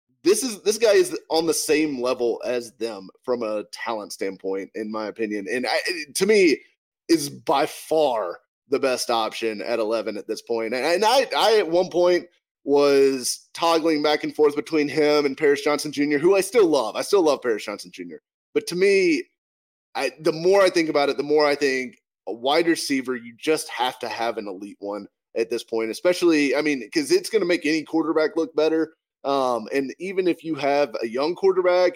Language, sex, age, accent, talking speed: English, male, 30-49, American, 205 wpm